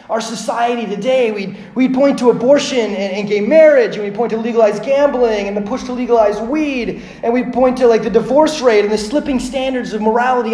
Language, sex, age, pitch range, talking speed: English, male, 30-49, 180-245 Hz, 215 wpm